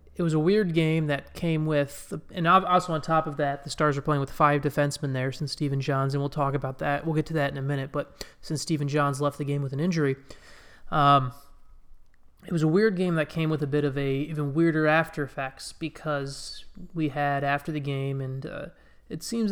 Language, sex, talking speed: English, male, 230 wpm